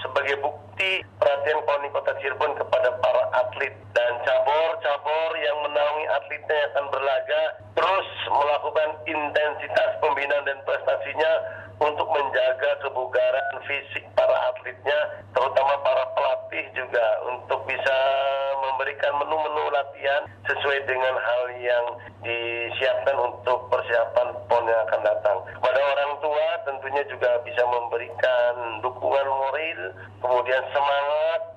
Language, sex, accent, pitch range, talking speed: Indonesian, male, native, 125-160 Hz, 110 wpm